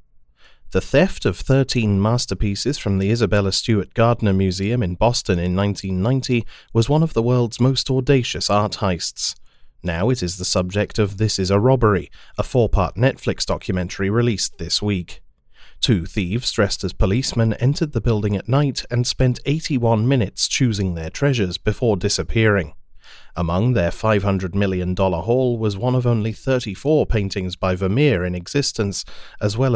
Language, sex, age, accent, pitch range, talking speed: English, male, 30-49, British, 95-120 Hz, 155 wpm